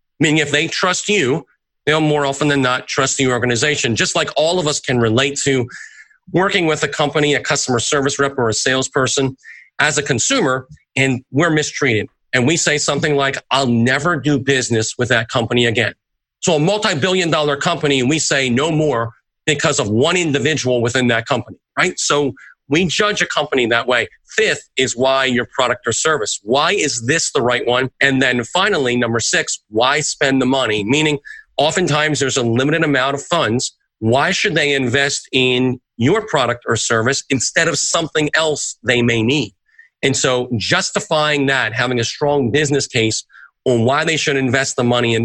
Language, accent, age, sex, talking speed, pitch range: English, American, 40-59, male, 185 wpm, 125-150 Hz